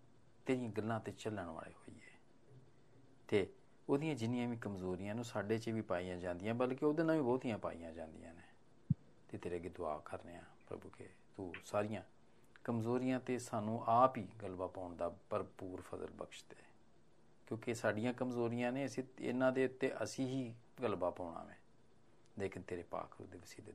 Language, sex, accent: Hindi, male, native